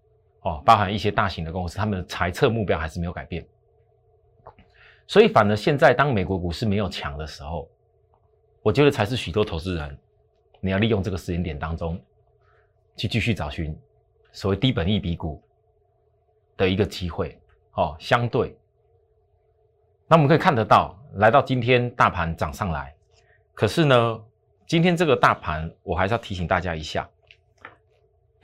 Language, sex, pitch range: Chinese, male, 90-110 Hz